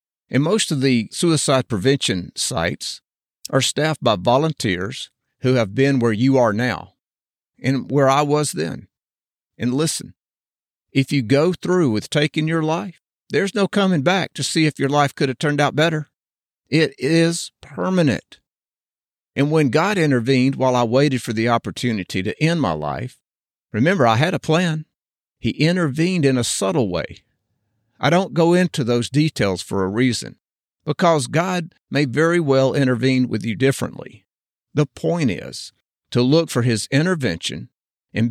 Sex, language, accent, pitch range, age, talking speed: male, English, American, 120-155 Hz, 50-69, 160 wpm